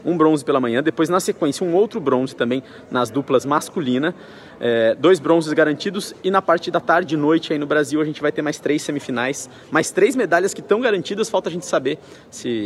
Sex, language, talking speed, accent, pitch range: male, Portuguese, 220 wpm, Brazilian, 125-175 Hz